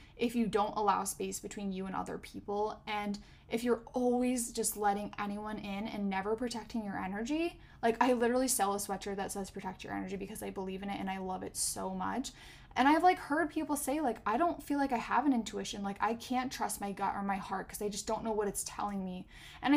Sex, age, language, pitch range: female, 10-29, English, 200-240 Hz